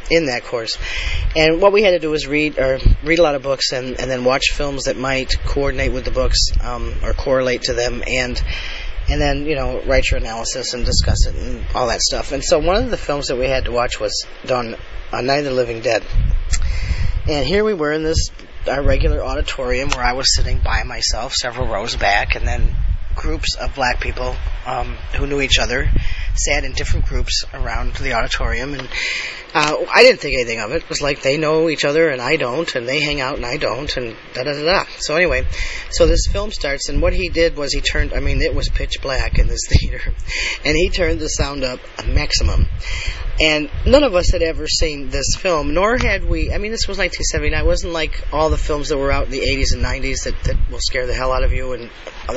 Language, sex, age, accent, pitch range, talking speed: English, male, 40-59, American, 90-145 Hz, 235 wpm